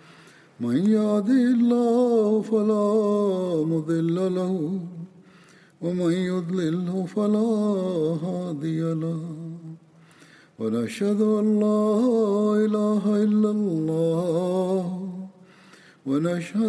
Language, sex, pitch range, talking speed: Turkish, male, 165-210 Hz, 60 wpm